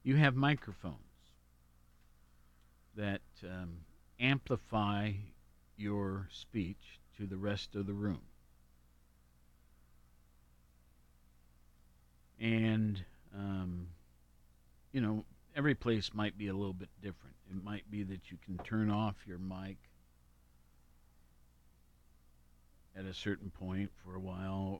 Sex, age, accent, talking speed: male, 50-69, American, 105 wpm